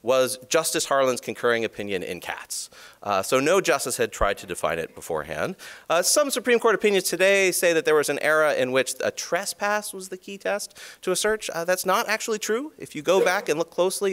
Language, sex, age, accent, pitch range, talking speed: English, male, 30-49, American, 140-210 Hz, 220 wpm